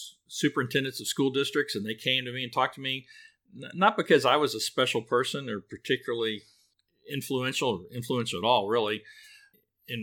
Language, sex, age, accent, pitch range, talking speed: English, male, 50-69, American, 105-145 Hz, 175 wpm